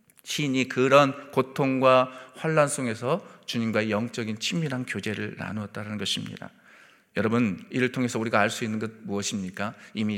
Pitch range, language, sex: 110-145 Hz, Korean, male